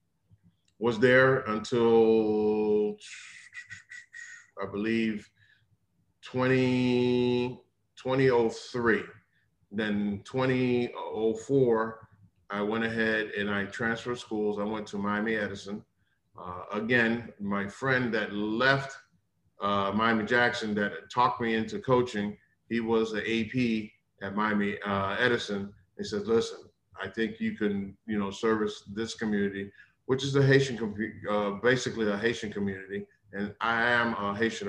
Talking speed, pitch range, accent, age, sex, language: 120 wpm, 100-120 Hz, American, 40-59, male, English